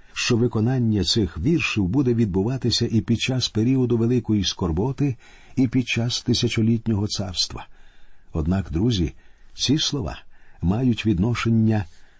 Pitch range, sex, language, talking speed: 90-120 Hz, male, Ukrainian, 115 wpm